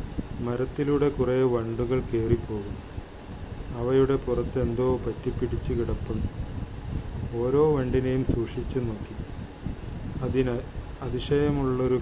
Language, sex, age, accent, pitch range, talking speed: Malayalam, male, 30-49, native, 115-135 Hz, 75 wpm